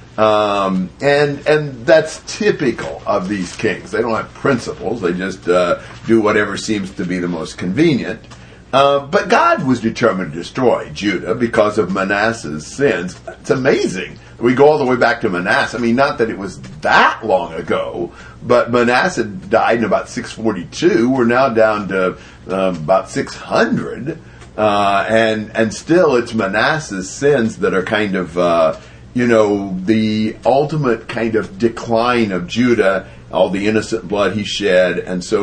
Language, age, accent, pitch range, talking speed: English, 50-69, American, 95-120 Hz, 165 wpm